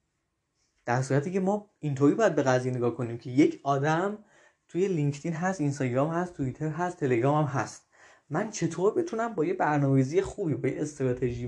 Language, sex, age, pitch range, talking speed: Persian, male, 20-39, 130-180 Hz, 180 wpm